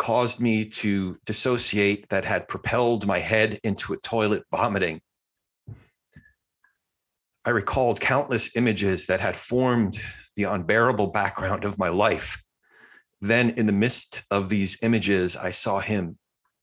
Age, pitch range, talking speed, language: 40-59, 95-105 Hz, 130 wpm, English